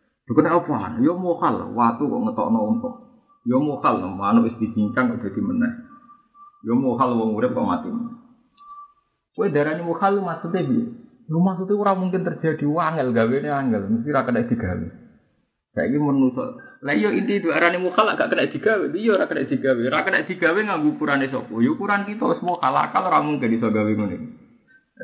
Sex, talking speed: male, 135 wpm